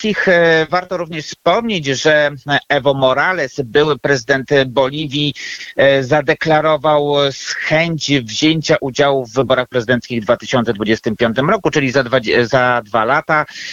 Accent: native